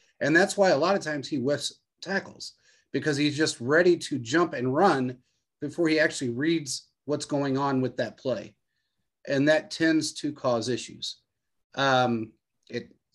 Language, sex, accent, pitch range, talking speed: English, male, American, 125-160 Hz, 165 wpm